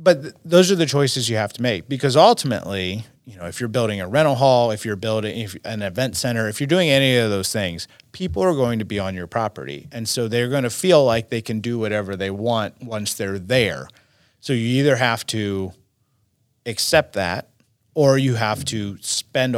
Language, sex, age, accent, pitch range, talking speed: English, male, 30-49, American, 105-130 Hz, 210 wpm